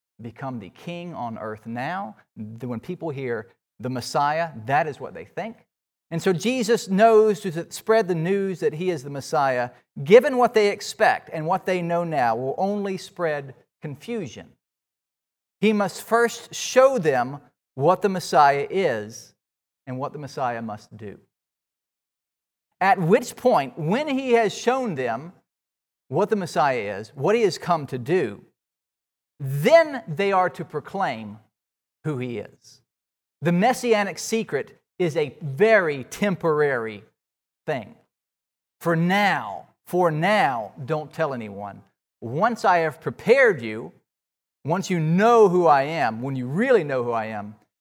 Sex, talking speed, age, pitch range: male, 145 wpm, 40-59, 115-195 Hz